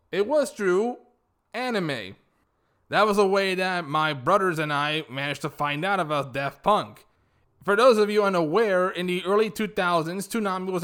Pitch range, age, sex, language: 150-210 Hz, 20-39, male, English